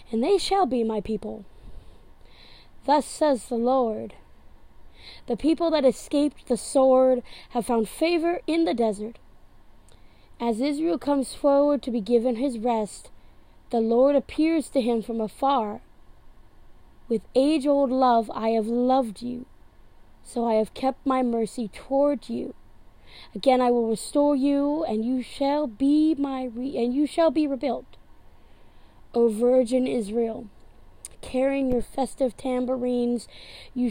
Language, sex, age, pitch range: English, female, 20-39, 225-275 Hz